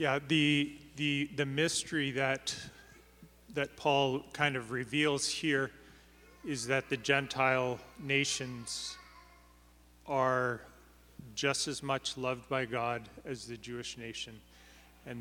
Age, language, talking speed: 30-49, English, 115 wpm